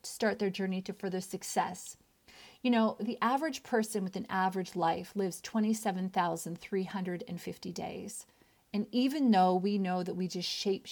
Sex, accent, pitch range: female, American, 180-210 Hz